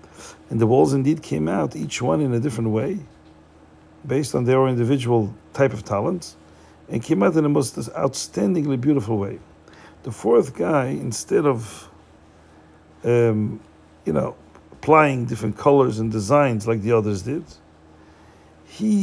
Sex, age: male, 50-69